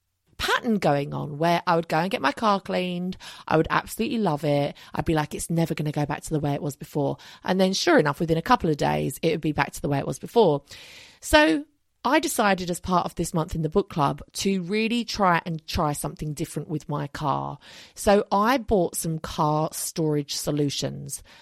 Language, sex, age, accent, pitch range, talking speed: English, female, 30-49, British, 150-195 Hz, 225 wpm